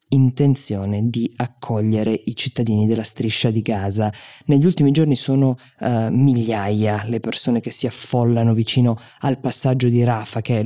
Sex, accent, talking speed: female, native, 145 wpm